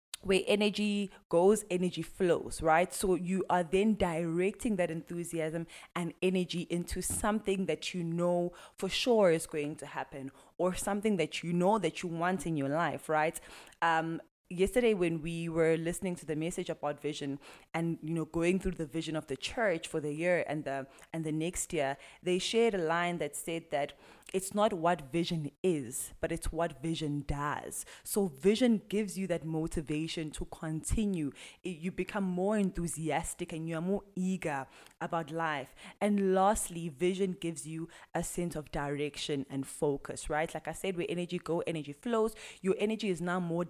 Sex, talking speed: female, 175 wpm